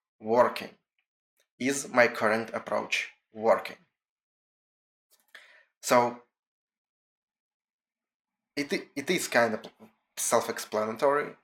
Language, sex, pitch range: English, male, 110-120 Hz